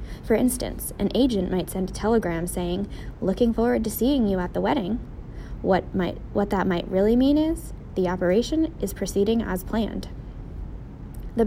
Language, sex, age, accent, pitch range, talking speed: English, female, 20-39, American, 185-240 Hz, 165 wpm